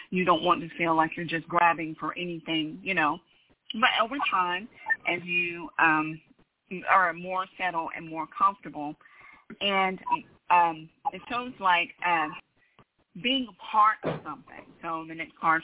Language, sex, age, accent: English, female, 30-49, American